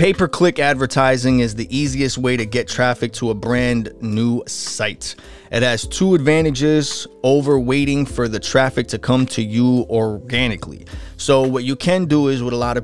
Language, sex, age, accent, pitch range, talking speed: English, male, 20-39, American, 110-130 Hz, 180 wpm